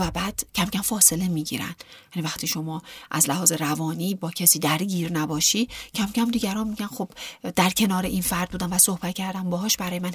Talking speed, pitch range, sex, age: 190 wpm, 160-195 Hz, female, 40-59